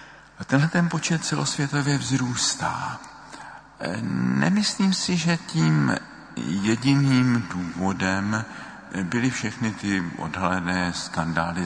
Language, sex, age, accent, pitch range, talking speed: Czech, male, 50-69, native, 85-125 Hz, 80 wpm